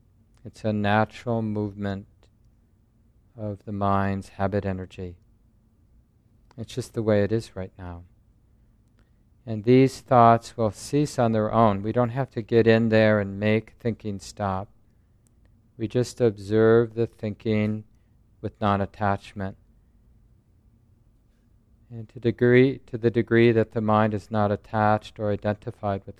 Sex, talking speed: male, 130 wpm